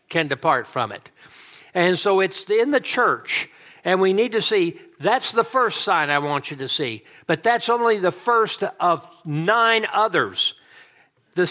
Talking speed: 170 wpm